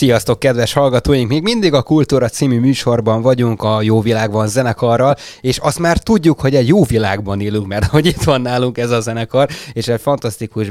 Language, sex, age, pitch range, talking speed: Hungarian, male, 20-39, 95-115 Hz, 190 wpm